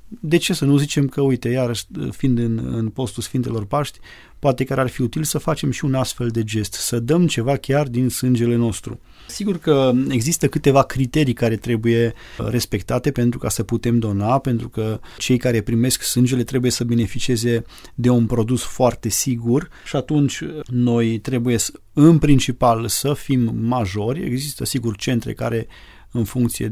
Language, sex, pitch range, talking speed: Romanian, male, 115-135 Hz, 170 wpm